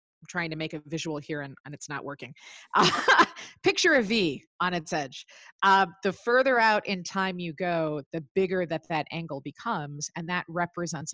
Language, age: English, 30-49